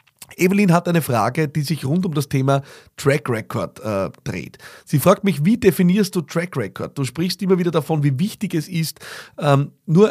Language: German